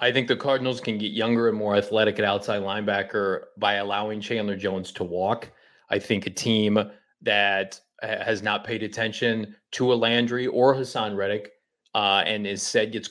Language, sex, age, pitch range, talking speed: English, male, 30-49, 105-125 Hz, 180 wpm